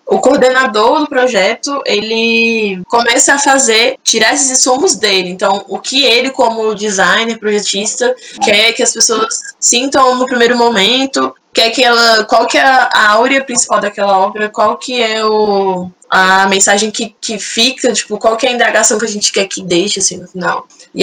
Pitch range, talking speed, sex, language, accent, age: 200-250 Hz, 180 wpm, female, Portuguese, Brazilian, 10-29